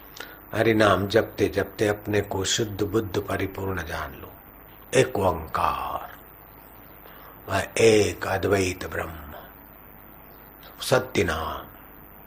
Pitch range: 90-110 Hz